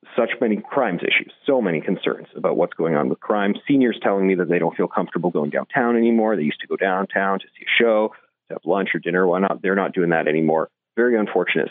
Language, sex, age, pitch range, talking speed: English, male, 40-59, 100-155 Hz, 240 wpm